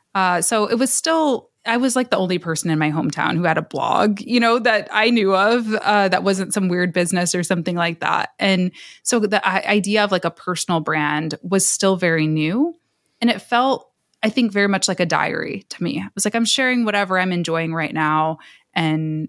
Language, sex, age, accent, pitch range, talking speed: English, female, 20-39, American, 170-225 Hz, 220 wpm